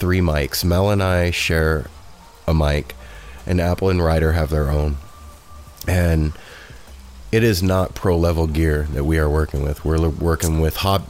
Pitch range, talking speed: 75-95 Hz, 170 wpm